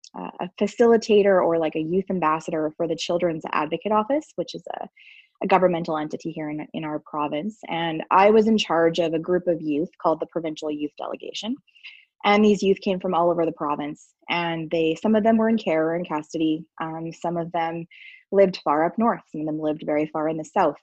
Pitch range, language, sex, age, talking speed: 160-215 Hz, English, female, 20-39, 215 wpm